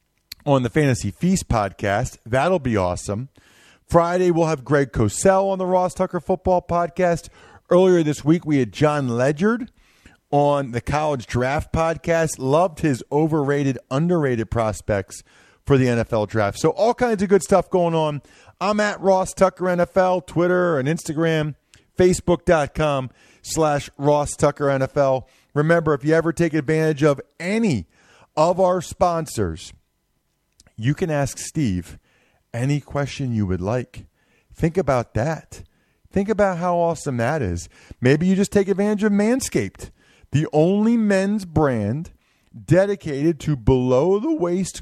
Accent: American